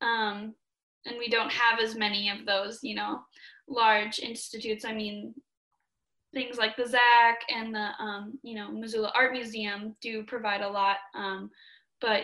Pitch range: 215-270 Hz